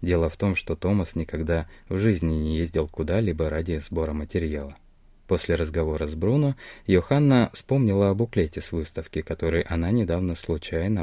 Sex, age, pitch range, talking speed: male, 20-39, 85-115 Hz, 150 wpm